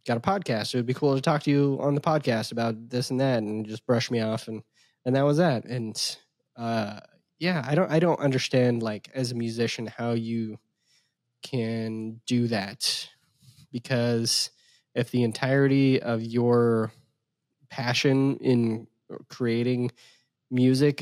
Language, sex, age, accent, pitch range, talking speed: English, male, 20-39, American, 115-130 Hz, 155 wpm